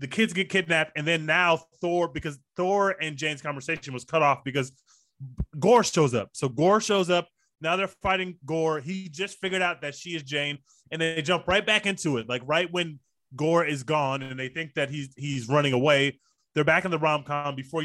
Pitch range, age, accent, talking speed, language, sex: 145-185 Hz, 20-39, American, 215 wpm, English, male